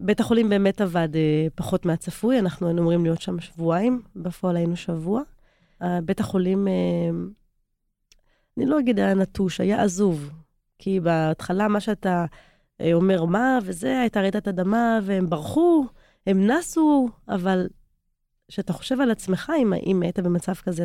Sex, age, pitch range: female, 20-39, 170-215 Hz